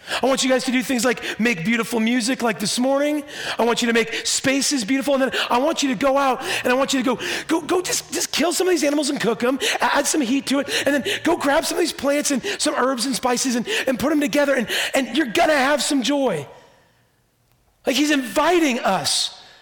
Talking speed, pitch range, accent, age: 250 wpm, 195-265 Hz, American, 40-59